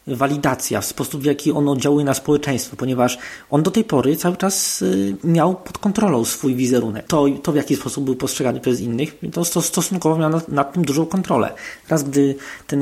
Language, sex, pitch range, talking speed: Polish, male, 125-155 Hz, 185 wpm